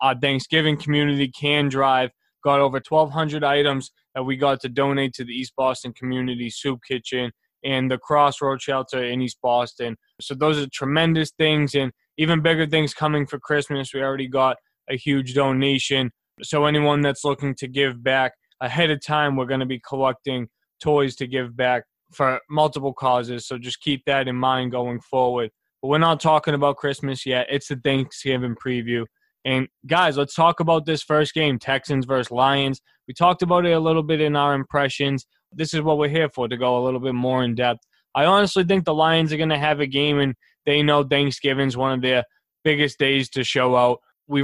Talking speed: 195 wpm